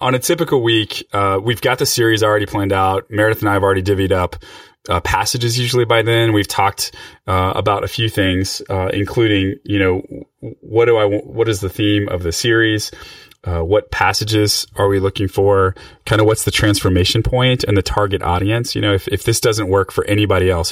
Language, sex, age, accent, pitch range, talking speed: English, male, 20-39, American, 90-115 Hz, 210 wpm